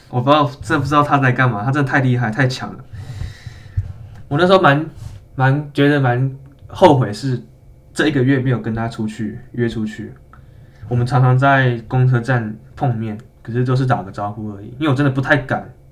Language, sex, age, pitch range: Chinese, male, 20-39, 110-135 Hz